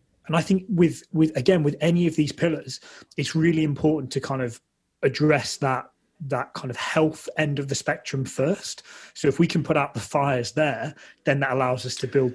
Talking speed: 210 wpm